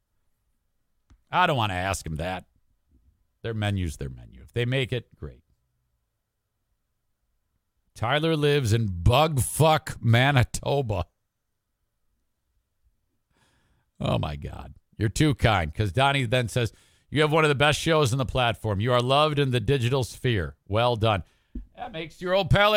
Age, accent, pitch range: 50-69, American, 100-170 Hz